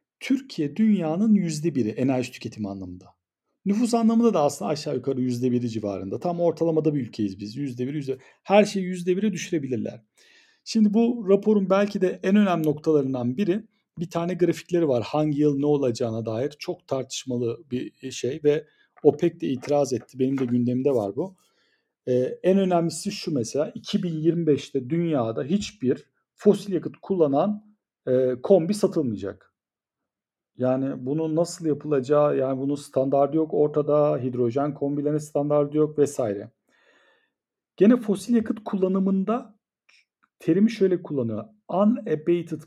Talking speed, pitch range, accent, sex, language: 130 wpm, 125-180 Hz, native, male, Turkish